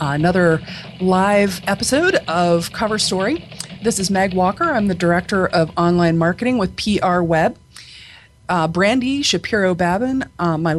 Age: 40-59